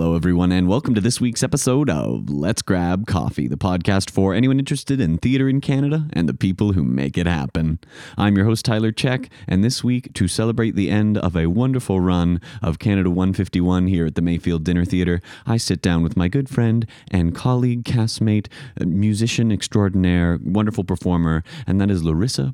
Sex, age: male, 30-49